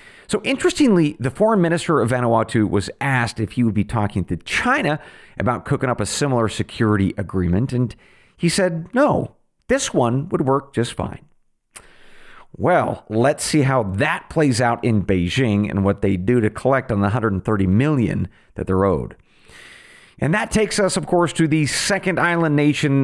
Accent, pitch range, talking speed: American, 105-155 Hz, 170 wpm